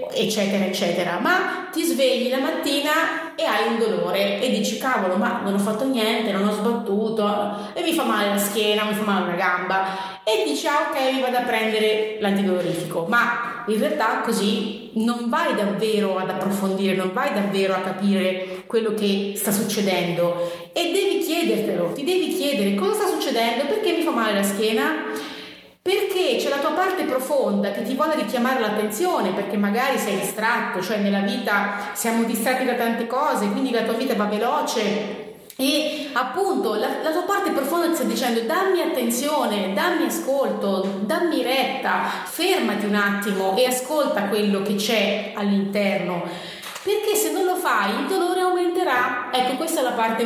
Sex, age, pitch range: female, 30-49, 200-285 Hz